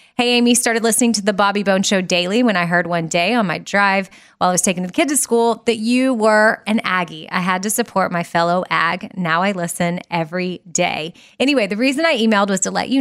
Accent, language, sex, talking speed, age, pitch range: American, English, female, 240 wpm, 20-39, 180-235 Hz